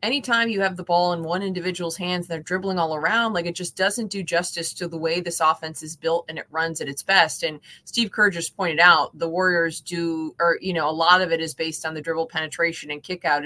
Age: 20-39